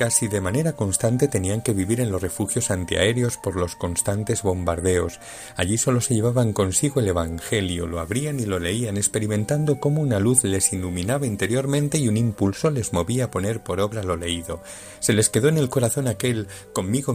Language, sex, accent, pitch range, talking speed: Spanish, male, Spanish, 95-125 Hz, 185 wpm